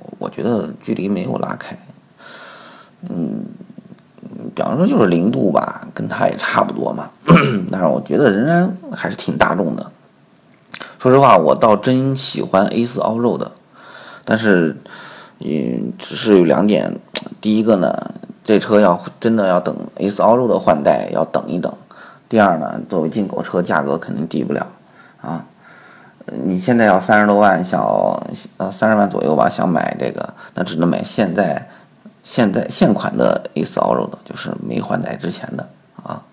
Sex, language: male, Chinese